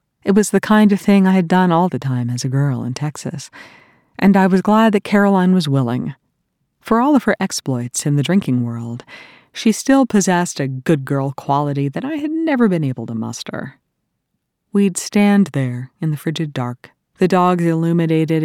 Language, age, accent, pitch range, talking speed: English, 40-59, American, 135-185 Hz, 190 wpm